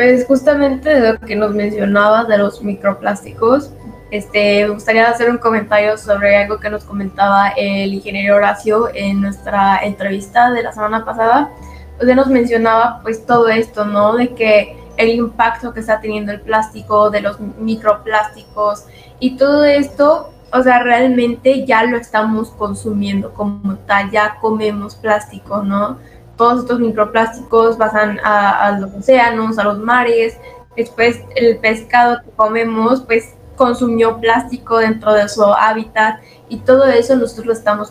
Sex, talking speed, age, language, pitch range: female, 155 wpm, 10-29, Spanish, 210-240 Hz